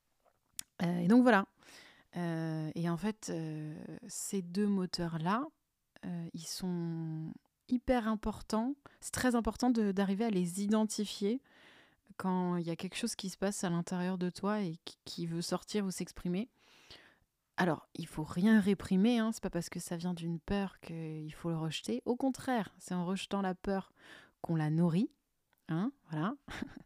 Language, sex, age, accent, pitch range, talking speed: French, female, 30-49, French, 170-210 Hz, 170 wpm